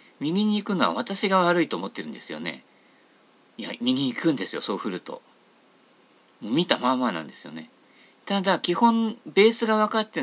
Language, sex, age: Japanese, male, 50-69